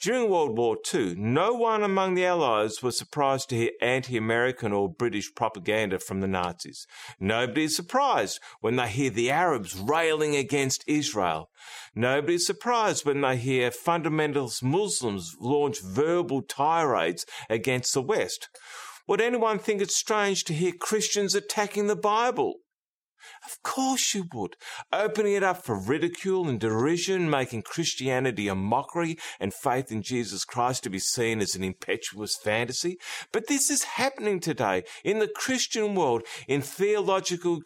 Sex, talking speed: male, 150 wpm